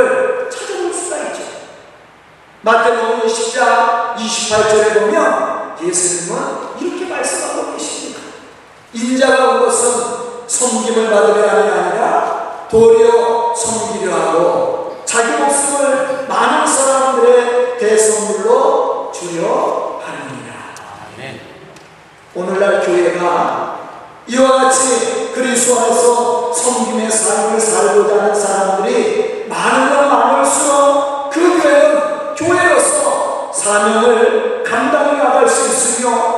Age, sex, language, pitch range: 40-59, male, Korean, 225-335 Hz